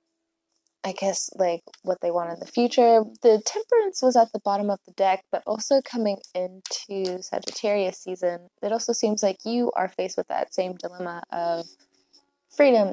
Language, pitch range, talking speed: English, 180-245 Hz, 170 wpm